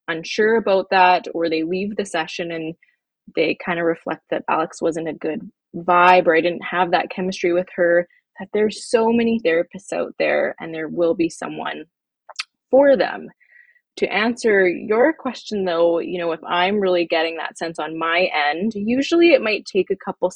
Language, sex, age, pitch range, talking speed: English, female, 20-39, 180-245 Hz, 185 wpm